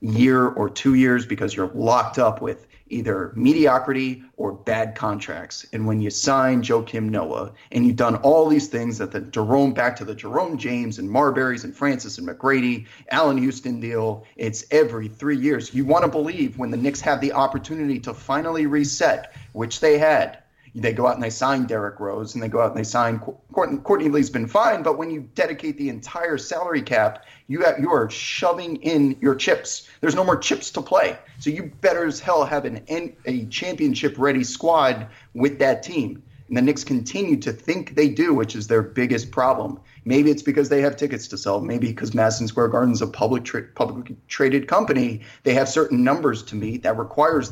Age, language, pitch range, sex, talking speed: 30-49, English, 115-145 Hz, male, 200 wpm